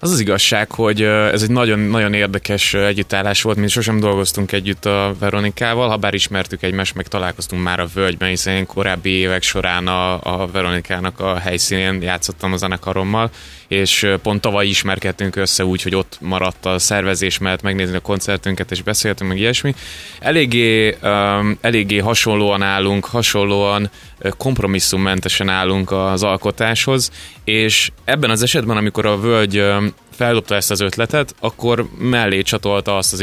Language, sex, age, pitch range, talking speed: Hungarian, male, 20-39, 95-110 Hz, 150 wpm